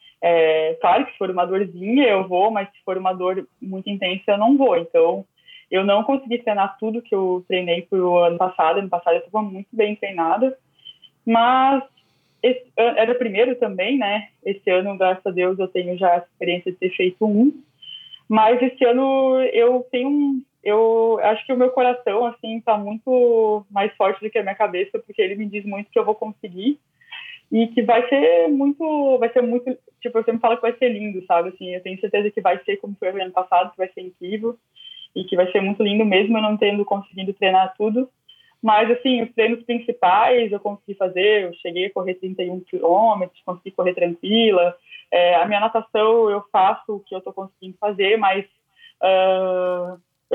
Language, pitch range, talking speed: Portuguese, 185-240 Hz, 195 wpm